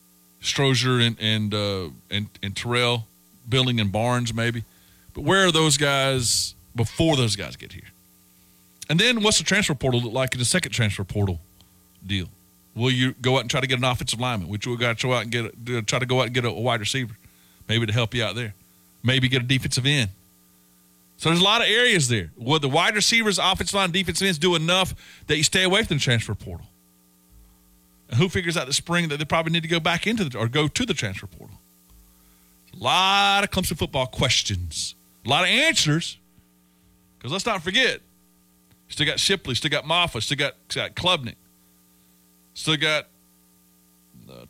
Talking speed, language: 200 wpm, English